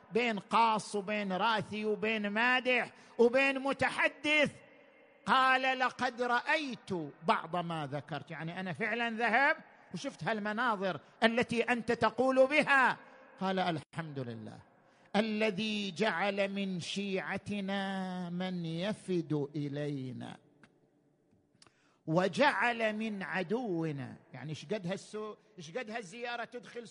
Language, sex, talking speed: Arabic, male, 95 wpm